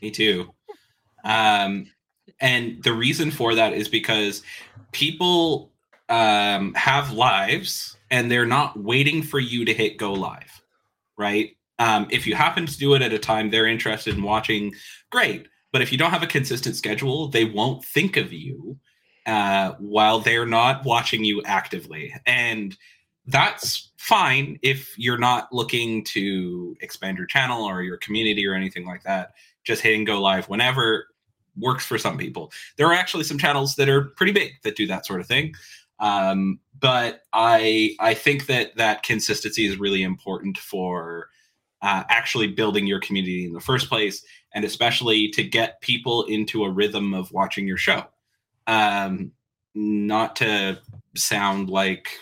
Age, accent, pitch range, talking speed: 20-39, American, 100-125 Hz, 160 wpm